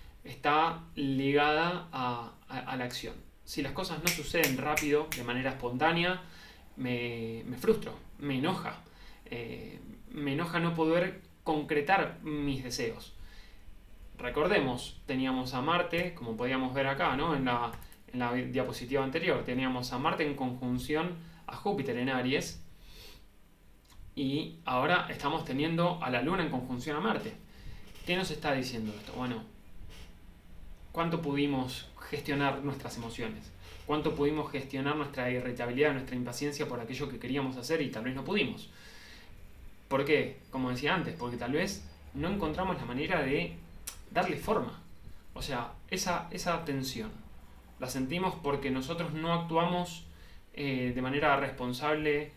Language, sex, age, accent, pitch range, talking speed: Spanish, male, 20-39, Argentinian, 120-150 Hz, 135 wpm